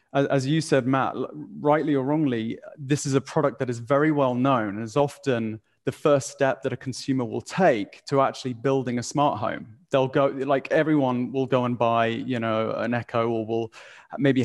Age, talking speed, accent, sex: 30-49, 200 wpm, British, male